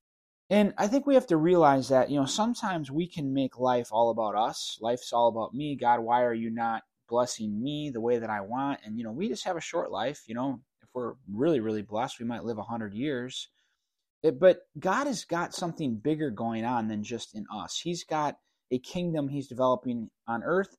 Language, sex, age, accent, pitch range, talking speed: English, male, 20-39, American, 120-170 Hz, 220 wpm